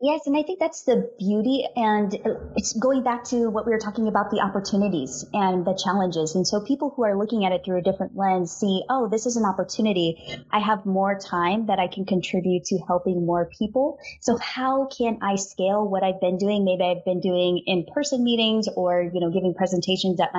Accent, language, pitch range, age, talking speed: American, English, 185-225 Hz, 20-39, 210 wpm